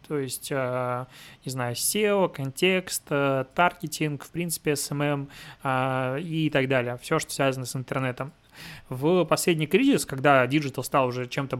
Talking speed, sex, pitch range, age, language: 135 wpm, male, 130-155 Hz, 20-39, Russian